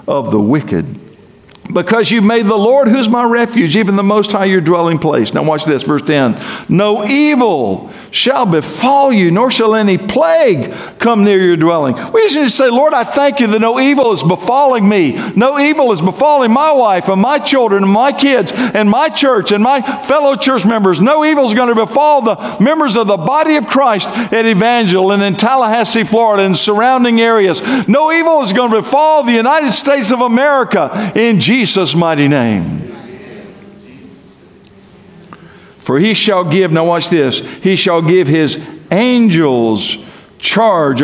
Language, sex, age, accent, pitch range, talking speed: English, male, 50-69, American, 165-250 Hz, 175 wpm